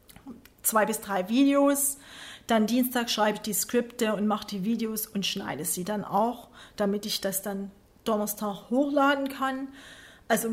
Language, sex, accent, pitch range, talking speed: German, female, German, 200-230 Hz, 155 wpm